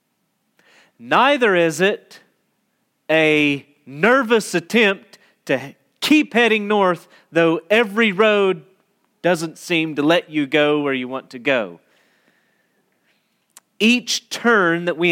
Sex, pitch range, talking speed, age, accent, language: male, 150-215 Hz, 110 wpm, 40-59, American, English